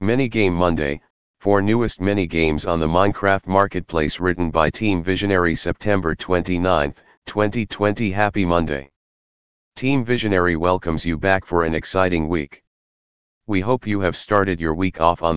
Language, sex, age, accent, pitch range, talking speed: English, male, 40-59, American, 80-100 Hz, 150 wpm